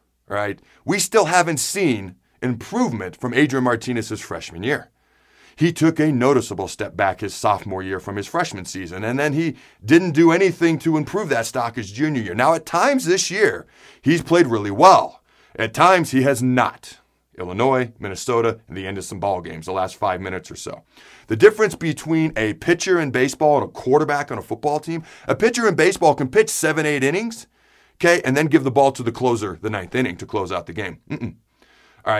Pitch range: 110-165 Hz